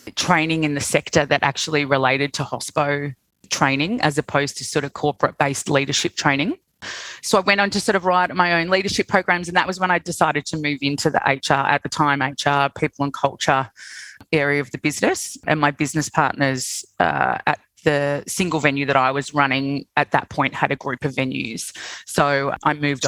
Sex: female